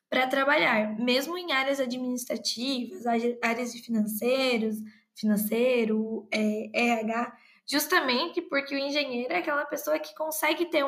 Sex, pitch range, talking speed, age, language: female, 230-275 Hz, 120 wpm, 10-29, Portuguese